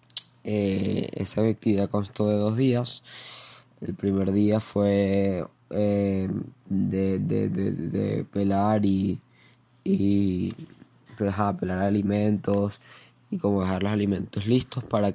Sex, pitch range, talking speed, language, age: male, 95-115 Hz, 120 wpm, Spanish, 10-29